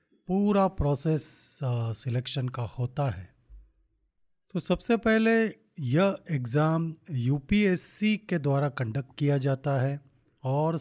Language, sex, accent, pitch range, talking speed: Hindi, male, native, 135-175 Hz, 105 wpm